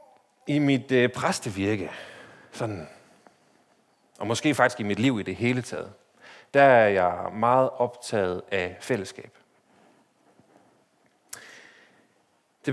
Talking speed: 100 wpm